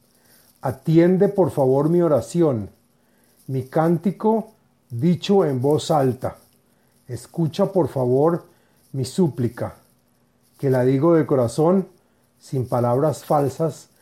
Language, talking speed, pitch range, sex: Spanish, 105 wpm, 125-170 Hz, male